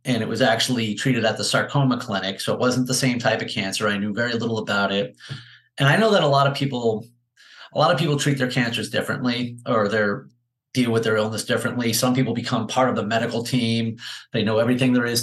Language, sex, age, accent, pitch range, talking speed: English, male, 30-49, American, 115-140 Hz, 235 wpm